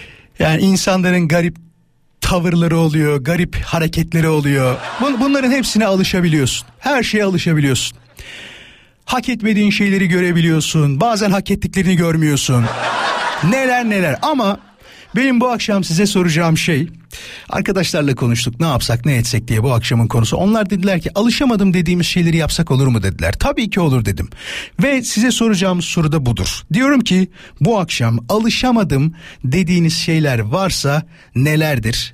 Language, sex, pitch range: Turkish, male, 145-200 Hz